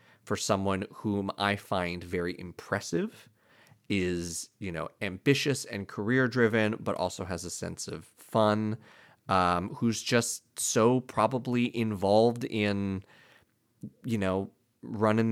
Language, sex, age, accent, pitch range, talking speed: English, male, 30-49, American, 95-120 Hz, 120 wpm